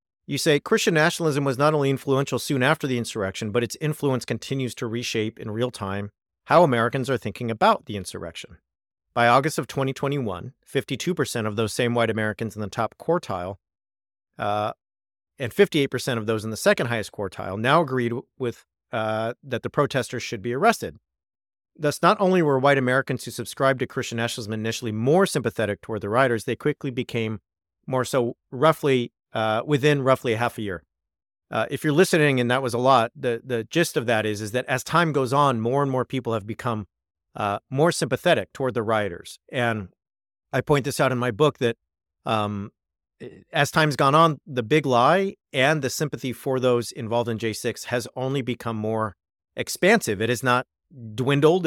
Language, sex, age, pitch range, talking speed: English, male, 40-59, 110-140 Hz, 190 wpm